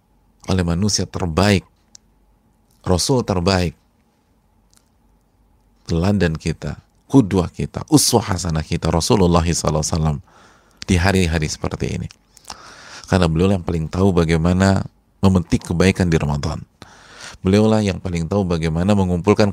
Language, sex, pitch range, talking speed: Indonesian, male, 85-105 Hz, 100 wpm